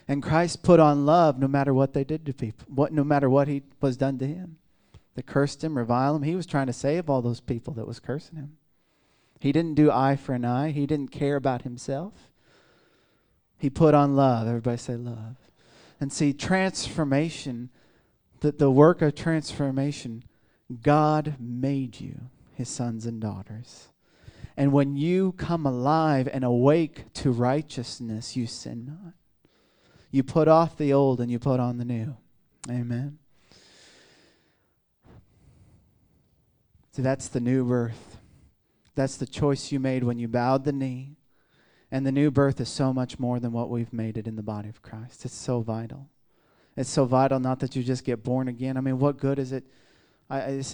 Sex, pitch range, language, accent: male, 125-145 Hz, English, American